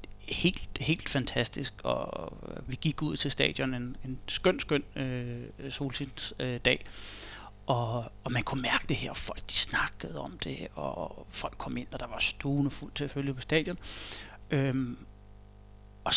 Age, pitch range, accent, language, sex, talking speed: 30-49, 105-140 Hz, native, Danish, male, 170 wpm